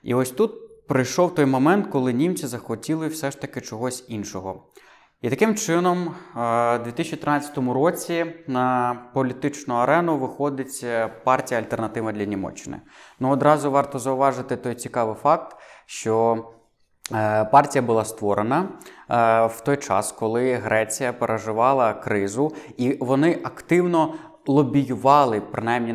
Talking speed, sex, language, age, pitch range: 120 wpm, male, Ukrainian, 20-39, 115-145 Hz